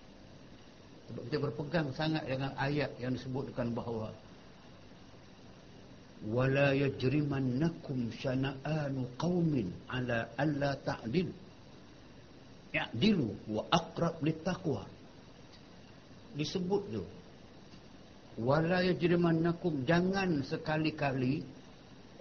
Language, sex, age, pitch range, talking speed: Malay, male, 60-79, 130-160 Hz, 70 wpm